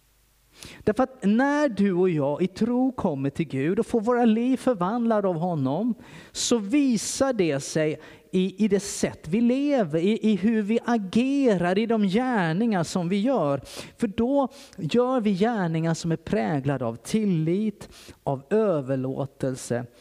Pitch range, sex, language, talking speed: 130-215 Hz, male, Swedish, 150 wpm